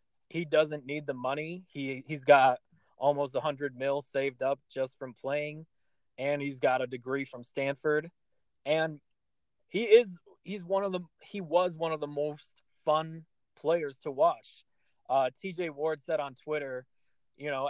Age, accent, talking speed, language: 20-39, American, 165 wpm, English